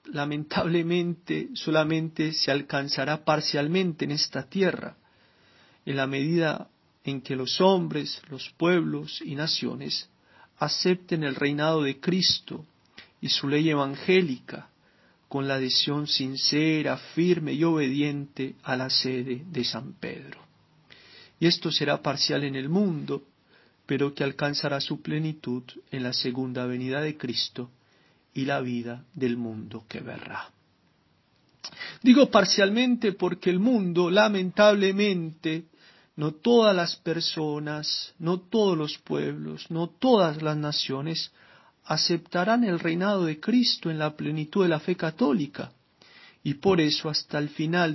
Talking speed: 130 wpm